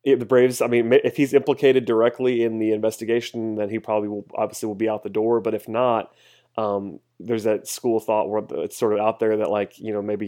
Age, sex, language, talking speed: 30-49, male, English, 245 wpm